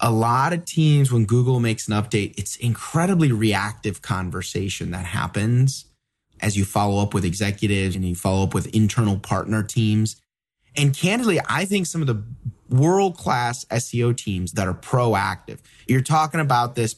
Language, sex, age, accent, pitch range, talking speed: English, male, 30-49, American, 110-145 Hz, 165 wpm